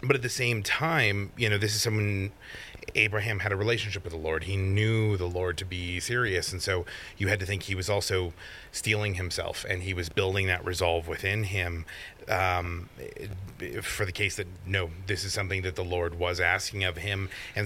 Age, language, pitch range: 30-49, English, 90-110 Hz